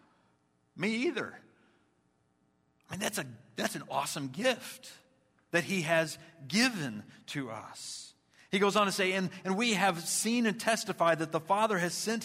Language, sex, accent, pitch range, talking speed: English, male, American, 120-165 Hz, 160 wpm